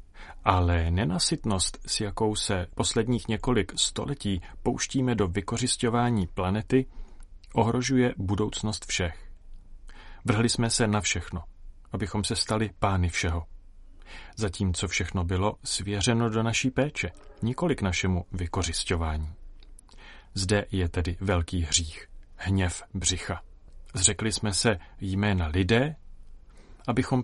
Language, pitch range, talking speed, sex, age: Czech, 90-115 Hz, 110 wpm, male, 40-59